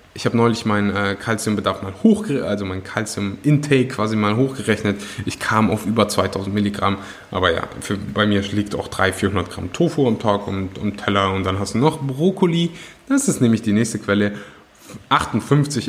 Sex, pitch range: male, 105-170 Hz